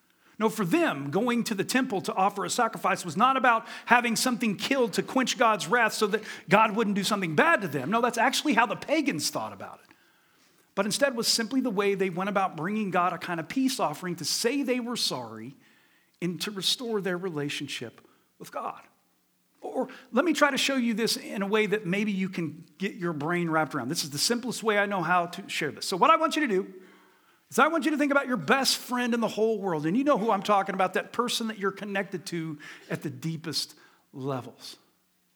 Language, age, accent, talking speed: English, 40-59, American, 230 wpm